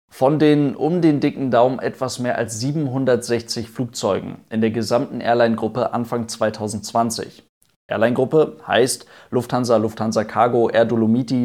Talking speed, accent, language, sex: 125 wpm, German, German, male